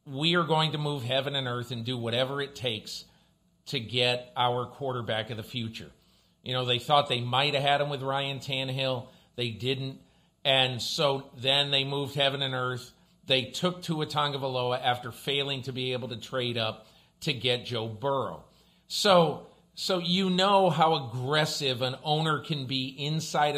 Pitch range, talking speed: 125-150 Hz, 175 wpm